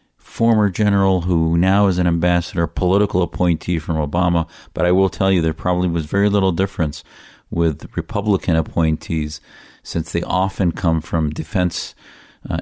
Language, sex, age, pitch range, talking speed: English, male, 40-59, 80-95 Hz, 150 wpm